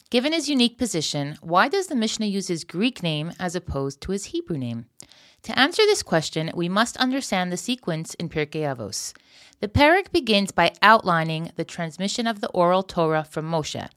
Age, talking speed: 30-49, 185 wpm